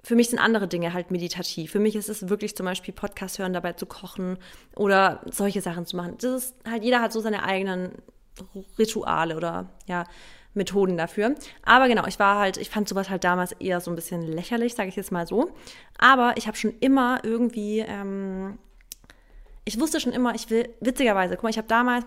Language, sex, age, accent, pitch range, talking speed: German, female, 20-39, German, 190-230 Hz, 205 wpm